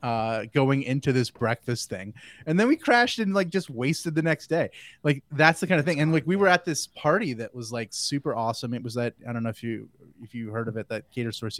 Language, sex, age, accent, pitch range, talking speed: English, male, 20-39, American, 110-130 Hz, 265 wpm